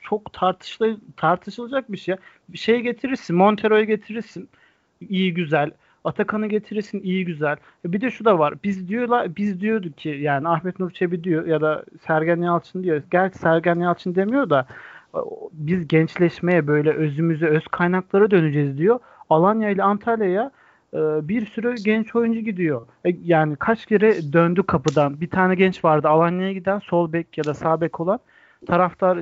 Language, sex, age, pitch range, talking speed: Turkish, male, 40-59, 160-200 Hz, 155 wpm